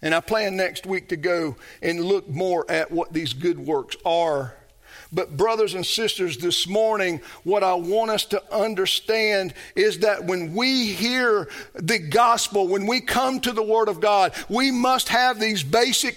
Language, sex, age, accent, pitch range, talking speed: English, male, 50-69, American, 180-245 Hz, 180 wpm